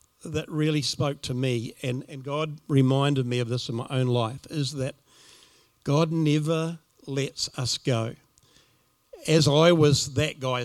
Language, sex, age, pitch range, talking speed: English, male, 50-69, 125-140 Hz, 160 wpm